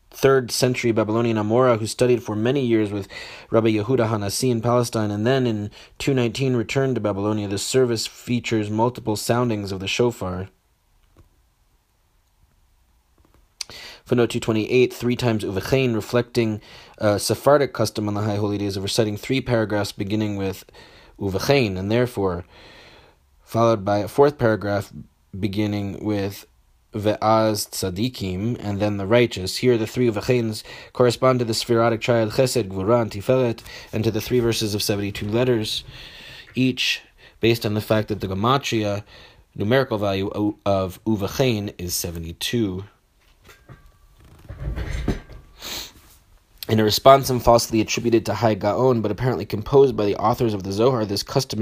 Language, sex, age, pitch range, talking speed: English, male, 30-49, 100-120 Hz, 140 wpm